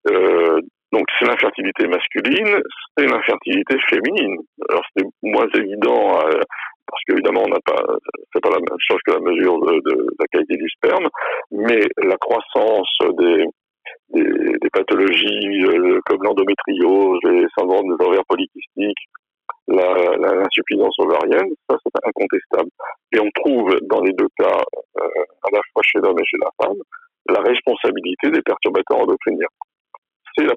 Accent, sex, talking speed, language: French, male, 150 wpm, French